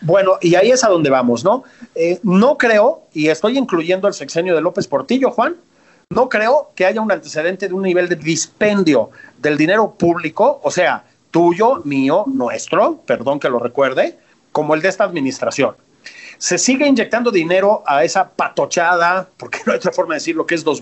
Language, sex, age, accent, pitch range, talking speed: Spanish, male, 40-59, Mexican, 175-255 Hz, 185 wpm